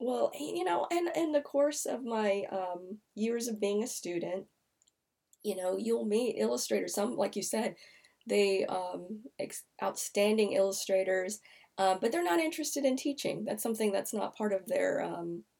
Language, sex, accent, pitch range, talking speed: English, female, American, 180-210 Hz, 165 wpm